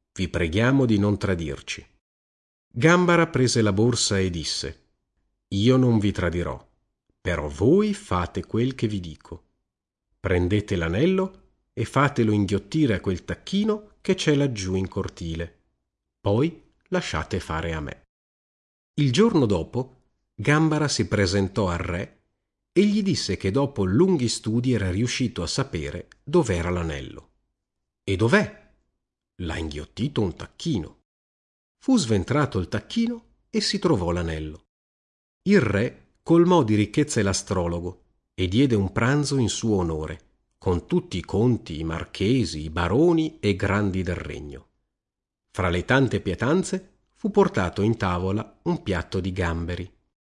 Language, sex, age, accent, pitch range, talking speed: Italian, male, 50-69, native, 85-130 Hz, 135 wpm